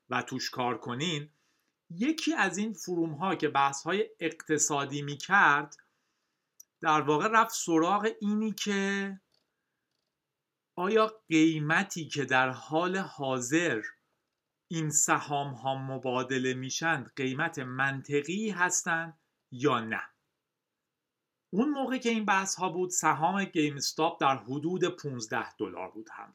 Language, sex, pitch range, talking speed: Persian, male, 145-220 Hz, 120 wpm